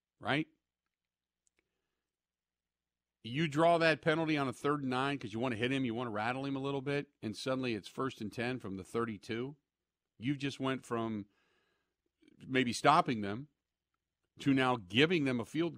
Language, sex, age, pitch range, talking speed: English, male, 40-59, 95-130 Hz, 180 wpm